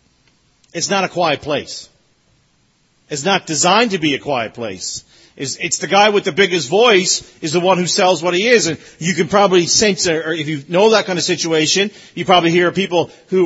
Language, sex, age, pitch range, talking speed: English, male, 40-59, 175-255 Hz, 210 wpm